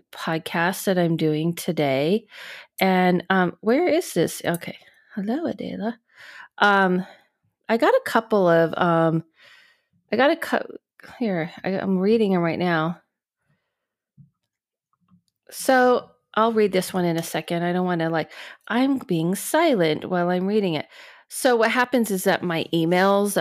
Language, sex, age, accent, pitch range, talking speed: English, female, 30-49, American, 165-225 Hz, 150 wpm